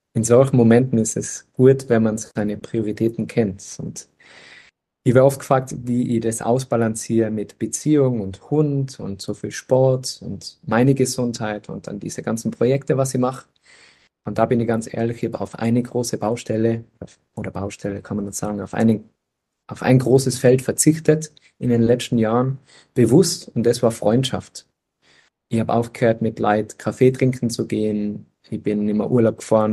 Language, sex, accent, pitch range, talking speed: German, male, German, 105-120 Hz, 170 wpm